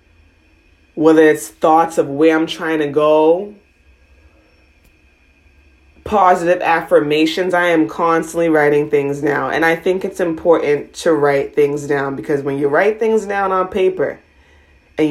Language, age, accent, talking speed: English, 20-39, American, 140 wpm